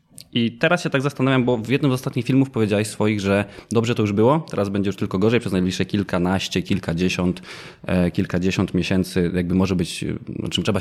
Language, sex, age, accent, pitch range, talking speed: Polish, male, 20-39, native, 95-115 Hz, 190 wpm